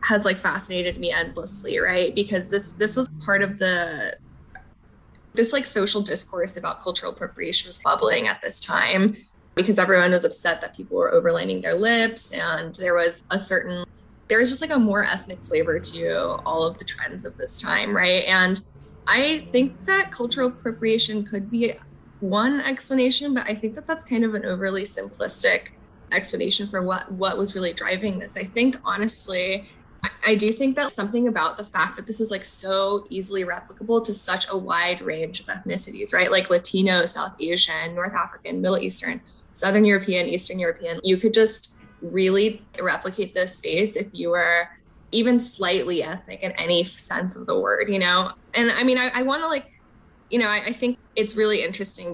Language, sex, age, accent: English, female, 10-29, American